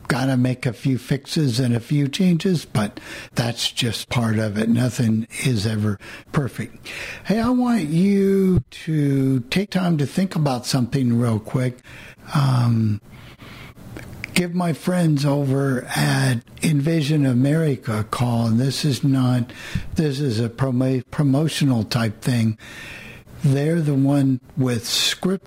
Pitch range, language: 120-150 Hz, English